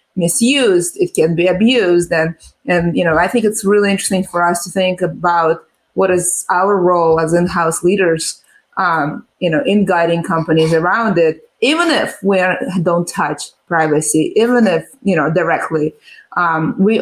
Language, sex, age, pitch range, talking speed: English, female, 20-39, 175-220 Hz, 170 wpm